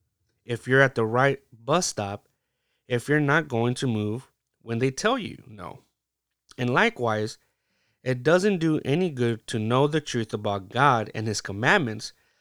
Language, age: English, 30-49